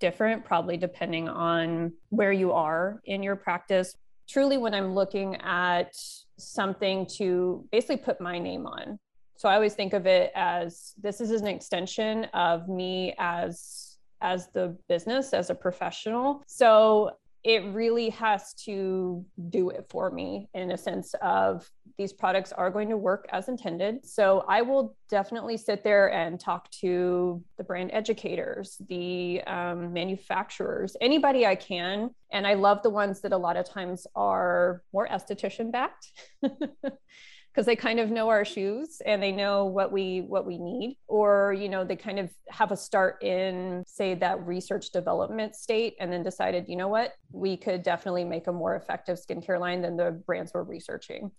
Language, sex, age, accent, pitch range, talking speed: English, female, 20-39, American, 180-215 Hz, 170 wpm